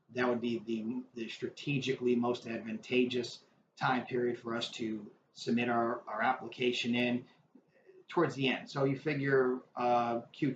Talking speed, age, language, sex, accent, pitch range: 140 wpm, 30-49, English, male, American, 120-140 Hz